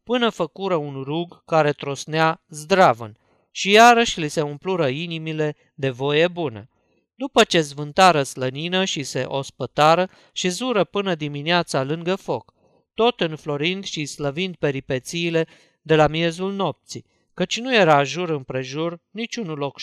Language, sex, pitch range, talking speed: Romanian, male, 145-185 Hz, 135 wpm